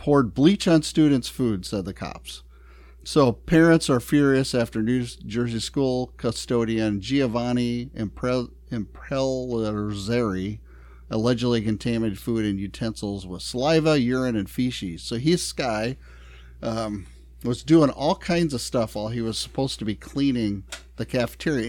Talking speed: 135 wpm